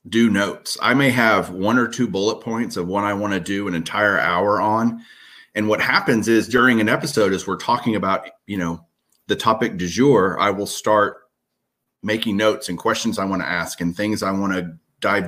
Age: 30-49